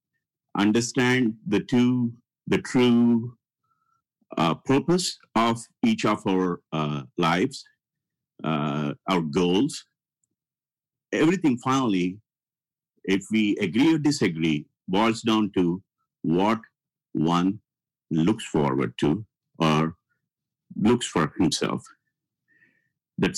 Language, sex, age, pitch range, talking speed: English, male, 50-69, 90-125 Hz, 90 wpm